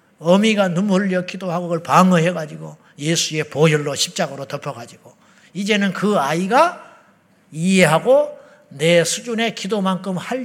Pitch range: 165-230 Hz